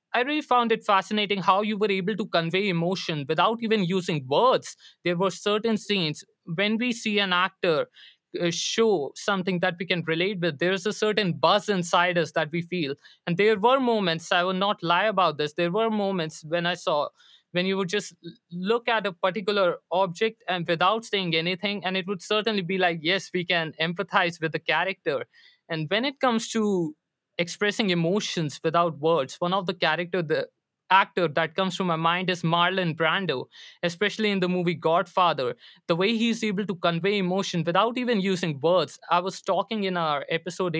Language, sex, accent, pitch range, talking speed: English, male, Indian, 170-205 Hz, 190 wpm